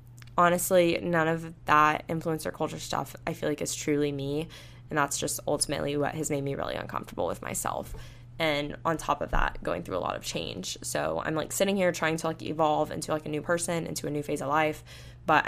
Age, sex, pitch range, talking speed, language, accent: 10-29, female, 140-165 Hz, 220 wpm, English, American